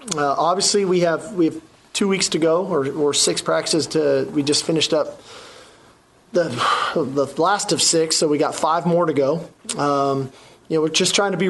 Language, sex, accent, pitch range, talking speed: English, male, American, 145-170 Hz, 205 wpm